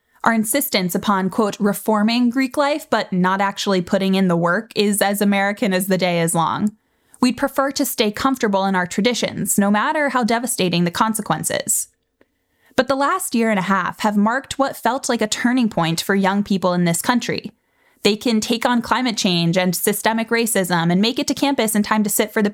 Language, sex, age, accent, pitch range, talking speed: English, female, 10-29, American, 195-255 Hz, 205 wpm